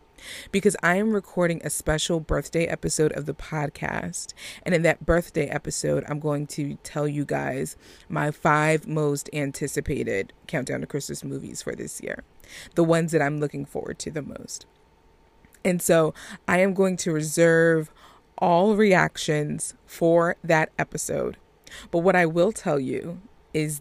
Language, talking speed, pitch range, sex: English, 155 wpm, 150-180 Hz, female